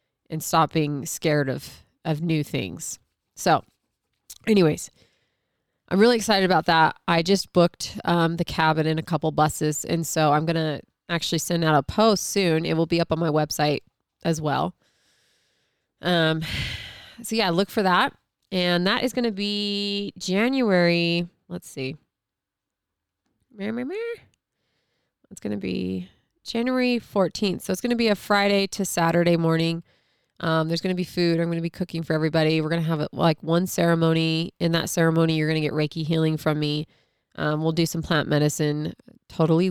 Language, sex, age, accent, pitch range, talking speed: English, female, 20-39, American, 150-180 Hz, 170 wpm